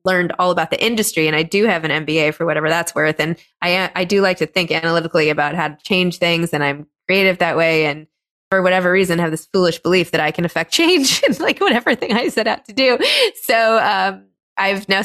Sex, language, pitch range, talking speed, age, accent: female, English, 160-195 Hz, 235 wpm, 20-39, American